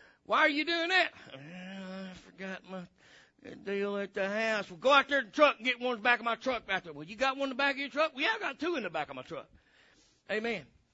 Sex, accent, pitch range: male, American, 155-215 Hz